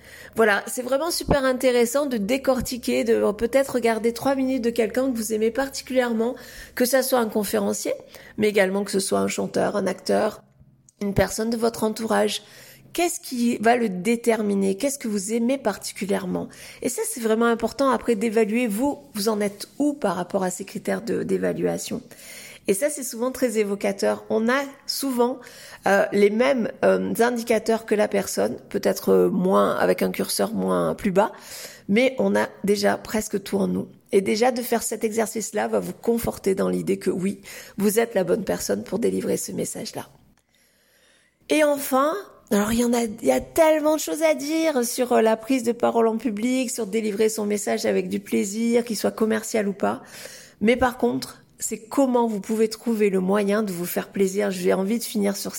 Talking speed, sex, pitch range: 190 wpm, female, 205-250 Hz